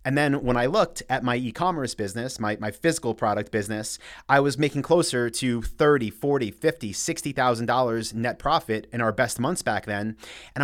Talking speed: 180 wpm